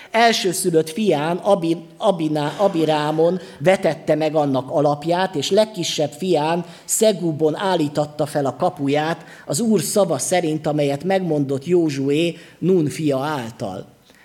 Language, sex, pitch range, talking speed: Hungarian, male, 145-180 Hz, 115 wpm